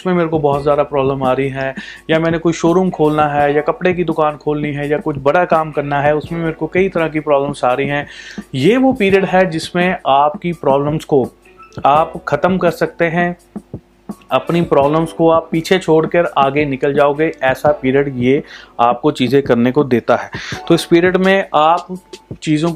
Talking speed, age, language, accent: 85 wpm, 30-49, Hindi, native